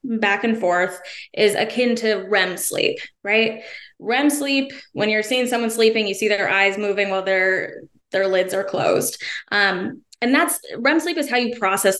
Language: English